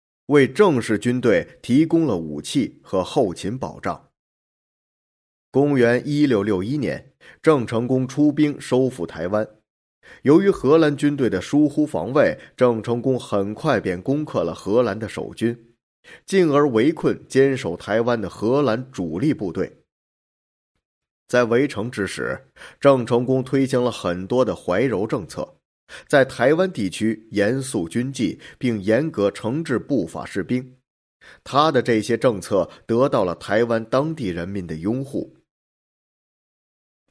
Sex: male